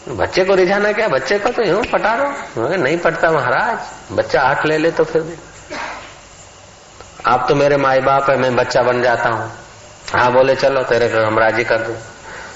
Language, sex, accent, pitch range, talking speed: Hindi, male, native, 115-140 Hz, 195 wpm